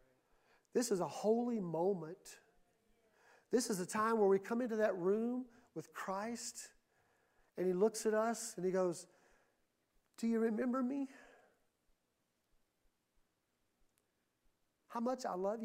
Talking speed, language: 125 wpm, English